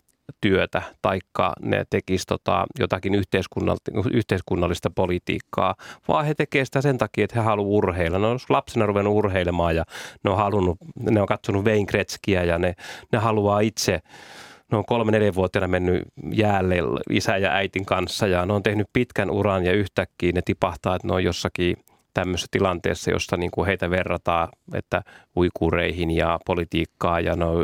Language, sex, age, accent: Finnish, male, 30-49, native